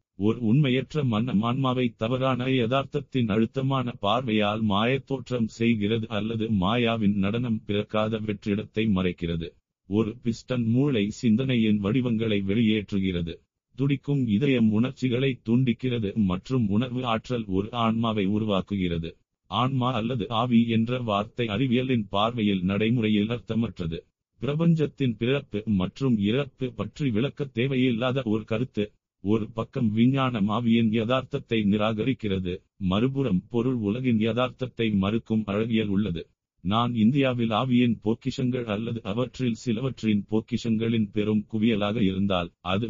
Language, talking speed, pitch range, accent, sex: Tamil, 105 wpm, 105-125 Hz, native, male